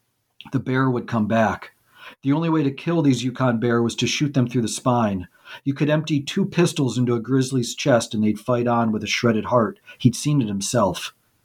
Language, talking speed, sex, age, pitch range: English, 215 wpm, male, 50-69, 110-130 Hz